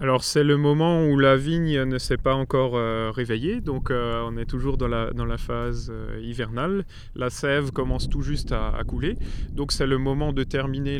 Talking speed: 215 wpm